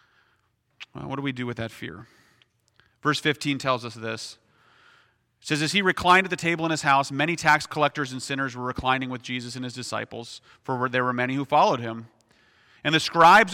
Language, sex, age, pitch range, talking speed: English, male, 30-49, 125-150 Hz, 205 wpm